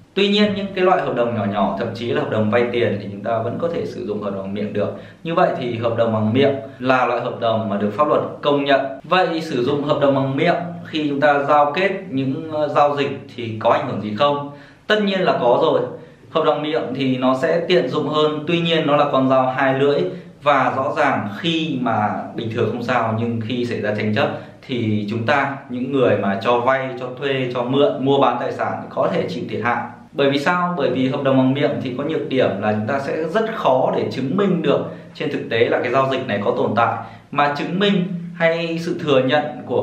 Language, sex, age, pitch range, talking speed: Vietnamese, male, 20-39, 120-155 Hz, 250 wpm